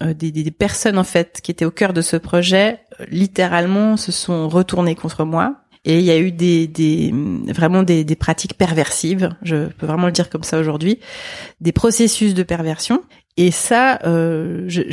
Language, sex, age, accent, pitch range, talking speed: French, female, 30-49, French, 170-215 Hz, 185 wpm